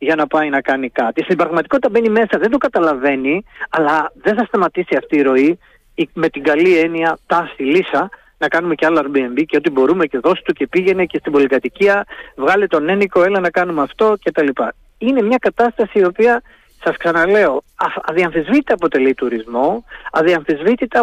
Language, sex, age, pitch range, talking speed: Greek, male, 30-49, 140-205 Hz, 175 wpm